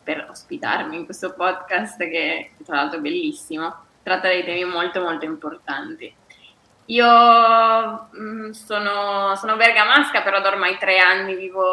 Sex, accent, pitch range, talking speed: female, native, 185-215 Hz, 135 wpm